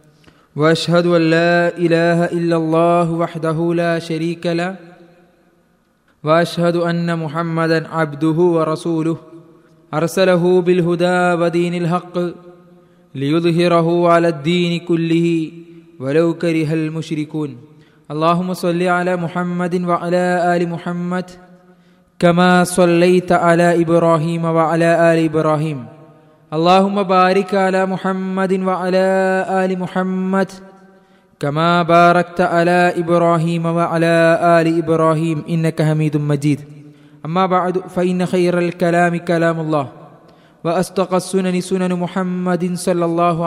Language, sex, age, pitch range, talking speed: Malayalam, male, 20-39, 160-180 Hz, 100 wpm